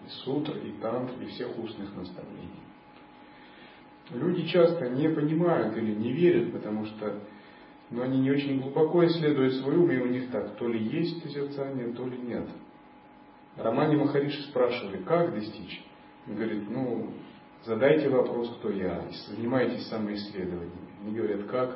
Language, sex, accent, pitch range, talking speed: Russian, male, native, 110-150 Hz, 145 wpm